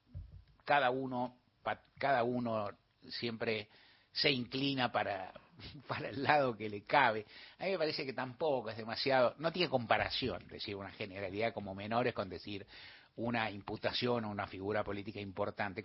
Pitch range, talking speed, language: 115-145 Hz, 150 wpm, Spanish